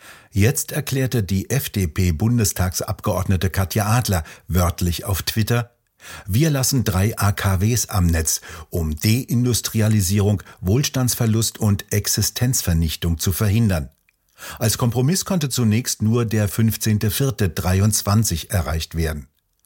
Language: German